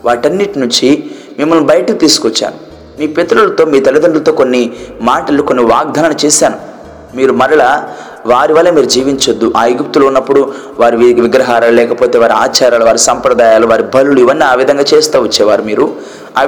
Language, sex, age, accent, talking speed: Telugu, male, 20-39, native, 140 wpm